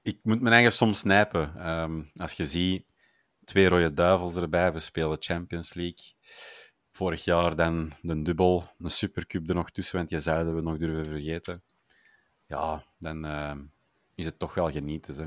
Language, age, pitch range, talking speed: Dutch, 30-49, 80-90 Hz, 170 wpm